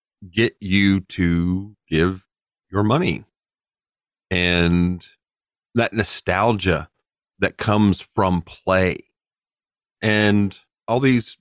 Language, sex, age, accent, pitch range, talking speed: English, male, 40-59, American, 90-105 Hz, 85 wpm